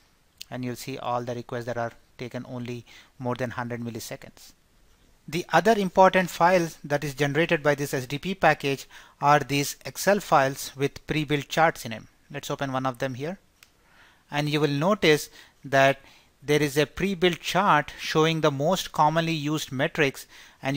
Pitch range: 135-160 Hz